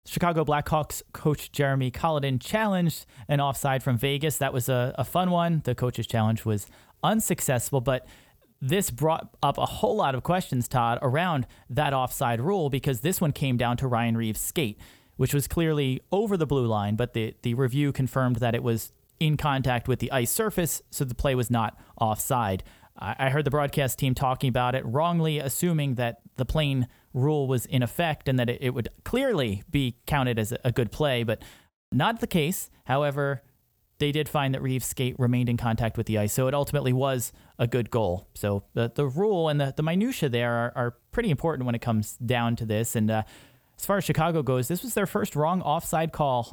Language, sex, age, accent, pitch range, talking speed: English, male, 30-49, American, 120-150 Hz, 200 wpm